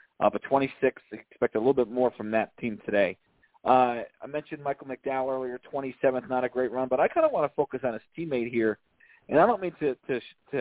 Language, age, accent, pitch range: English, 40-59, American, 115-135 Hz